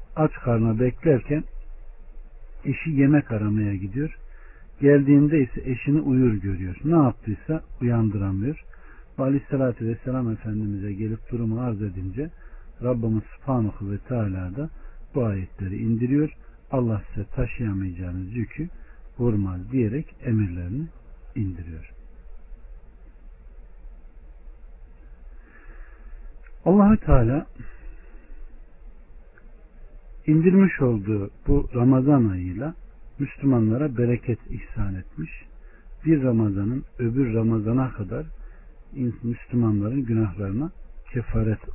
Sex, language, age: male, Turkish, 60-79